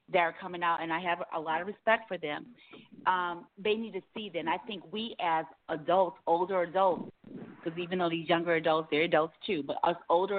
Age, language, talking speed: 40-59, English, 225 wpm